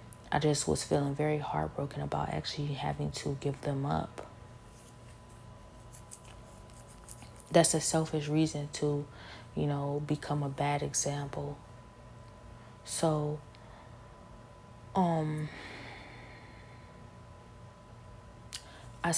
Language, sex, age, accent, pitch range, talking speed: English, female, 20-39, American, 110-155 Hz, 85 wpm